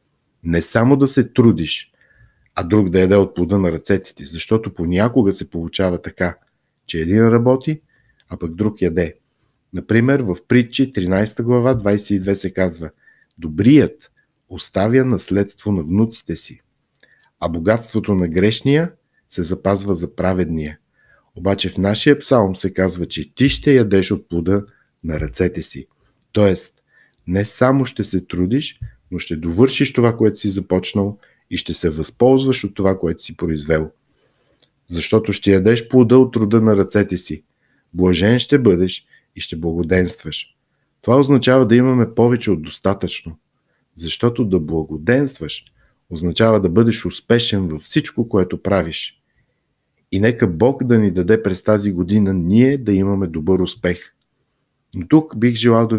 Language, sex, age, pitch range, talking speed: Bulgarian, male, 50-69, 90-115 Hz, 145 wpm